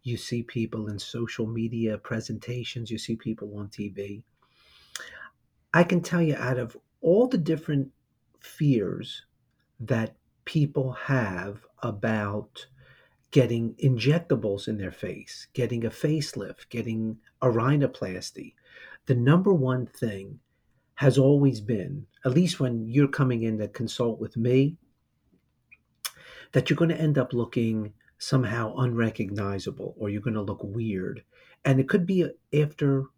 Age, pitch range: 50-69, 110-140 Hz